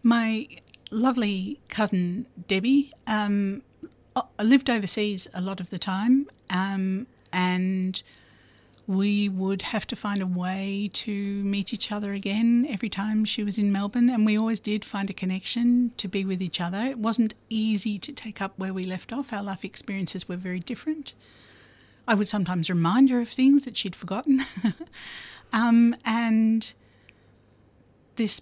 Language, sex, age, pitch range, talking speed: English, female, 60-79, 165-225 Hz, 155 wpm